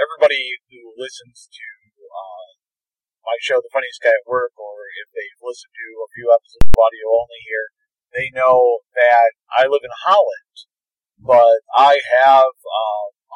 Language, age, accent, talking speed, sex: English, 40-59, American, 160 wpm, male